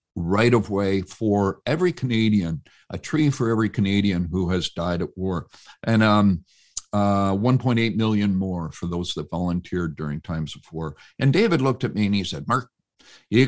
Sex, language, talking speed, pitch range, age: male, English, 180 wpm, 95-135 Hz, 60-79